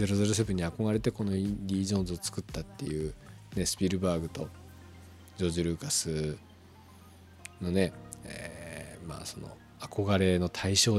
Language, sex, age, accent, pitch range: Japanese, male, 40-59, native, 85-105 Hz